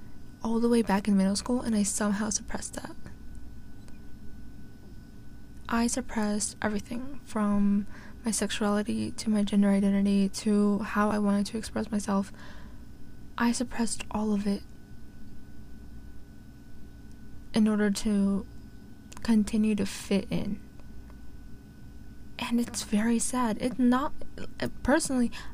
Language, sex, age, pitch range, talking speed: English, female, 20-39, 200-235 Hz, 115 wpm